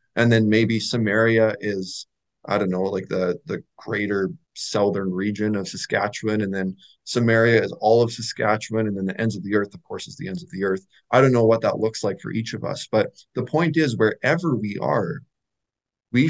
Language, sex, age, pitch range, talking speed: English, male, 20-39, 100-125 Hz, 210 wpm